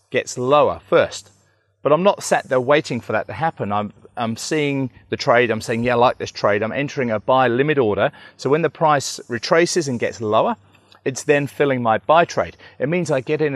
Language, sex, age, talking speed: English, male, 40-59, 220 wpm